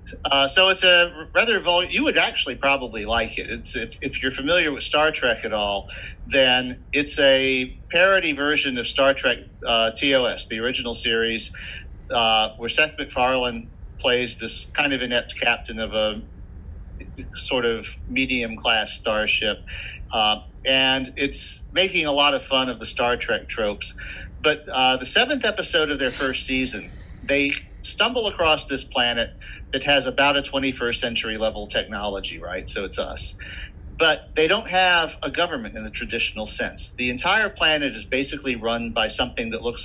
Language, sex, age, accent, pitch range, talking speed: English, male, 50-69, American, 95-145 Hz, 165 wpm